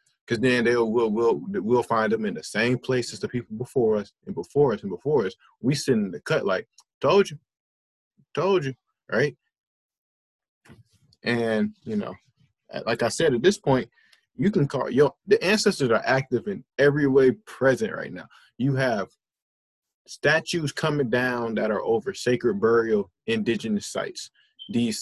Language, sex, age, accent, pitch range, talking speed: English, male, 20-39, American, 120-180 Hz, 170 wpm